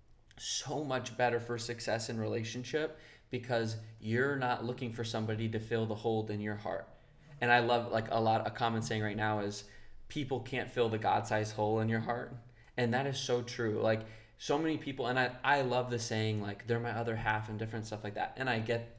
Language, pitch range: English, 110-120 Hz